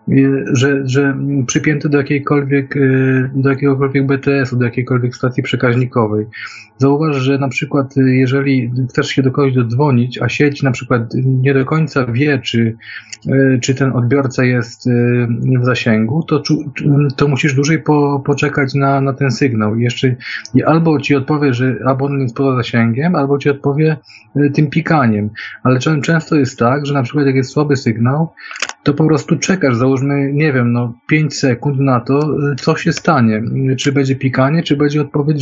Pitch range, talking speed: 130-145 Hz, 160 wpm